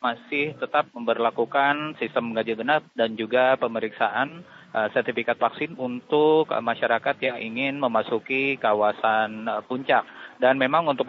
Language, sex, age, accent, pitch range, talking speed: Indonesian, male, 20-39, native, 115-135 Hz, 130 wpm